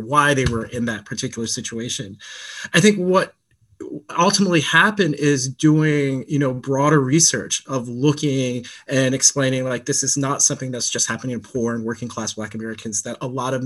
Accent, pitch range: American, 125-145 Hz